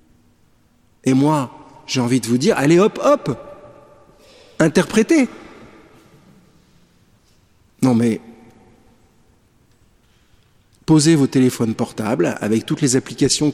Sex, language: male, French